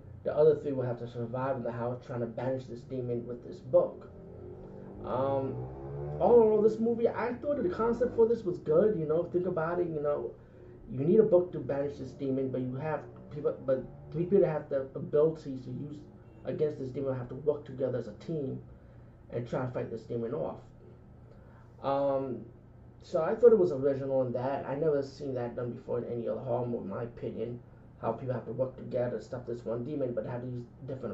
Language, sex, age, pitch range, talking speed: English, male, 30-49, 120-150 Hz, 220 wpm